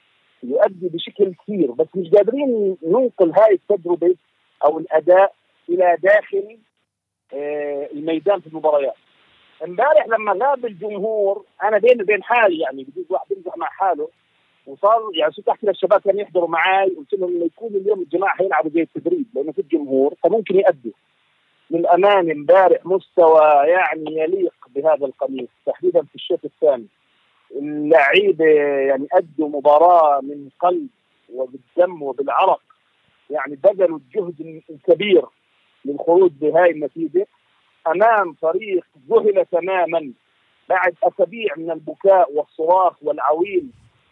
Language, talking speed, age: Arabic, 120 wpm, 40-59